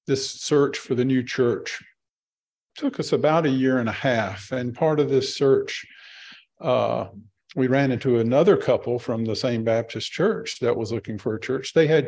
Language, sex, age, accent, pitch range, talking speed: English, male, 50-69, American, 115-140 Hz, 190 wpm